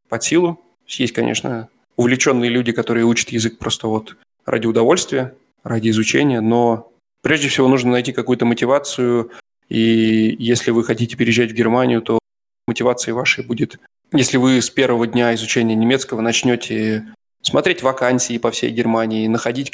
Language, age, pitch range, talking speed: Russian, 20-39, 115-125 Hz, 145 wpm